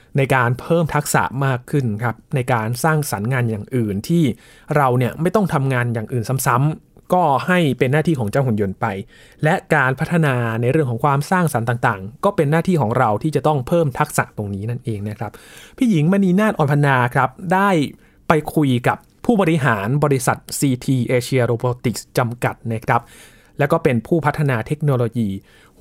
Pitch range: 120-155 Hz